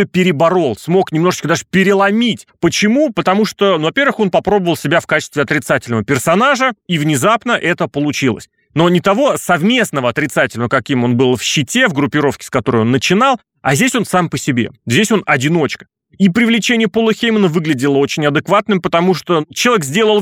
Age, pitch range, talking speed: 30-49, 140-195 Hz, 170 wpm